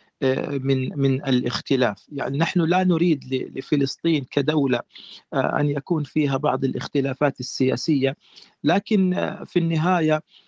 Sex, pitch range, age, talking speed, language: male, 135-175 Hz, 40-59, 105 wpm, Arabic